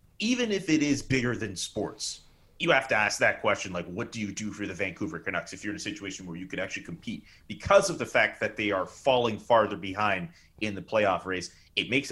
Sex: male